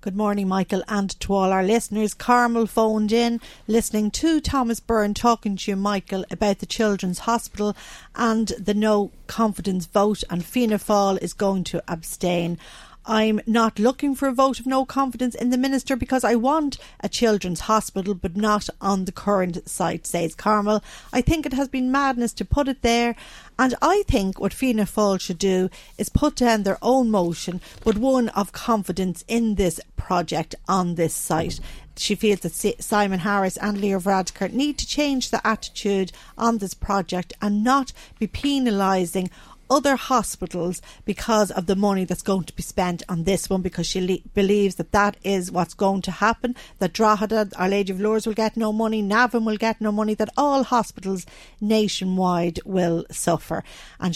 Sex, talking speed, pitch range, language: female, 180 wpm, 190-230 Hz, English